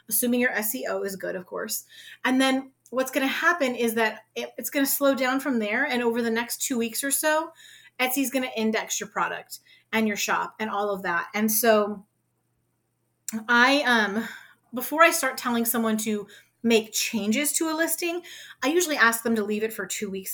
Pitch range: 210-265 Hz